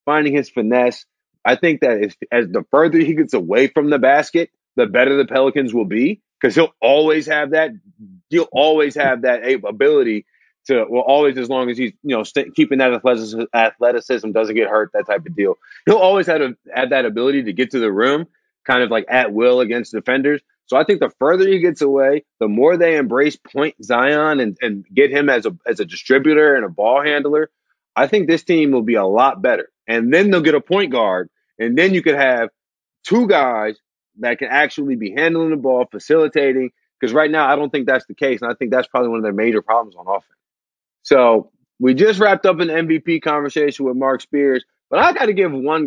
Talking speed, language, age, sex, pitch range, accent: 220 wpm, English, 30-49, male, 130-180 Hz, American